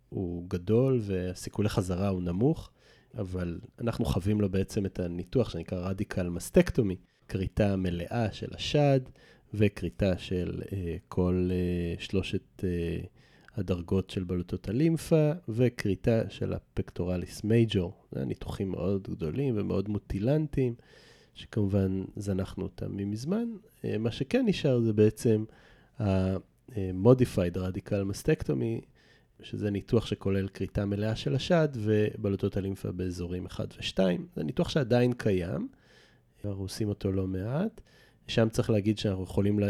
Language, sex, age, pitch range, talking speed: Hebrew, male, 30-49, 95-120 Hz, 120 wpm